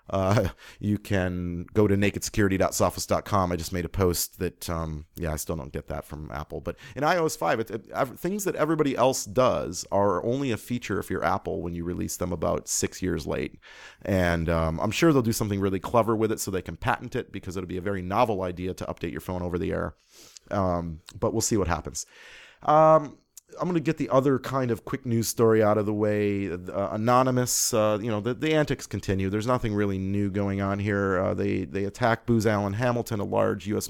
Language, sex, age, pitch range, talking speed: English, male, 30-49, 95-115 Hz, 220 wpm